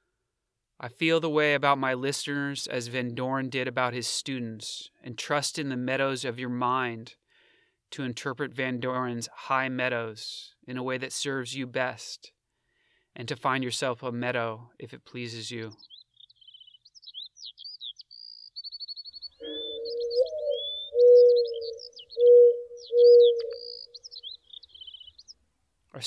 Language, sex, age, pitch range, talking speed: English, male, 30-49, 120-145 Hz, 105 wpm